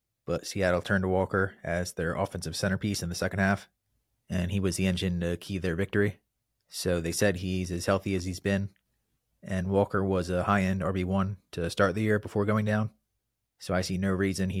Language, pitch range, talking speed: English, 90-100 Hz, 205 wpm